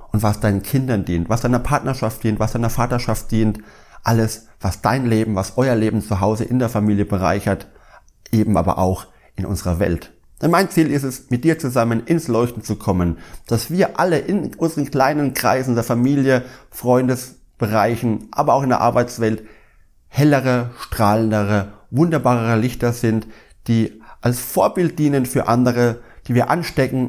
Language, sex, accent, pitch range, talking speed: German, male, German, 105-135 Hz, 160 wpm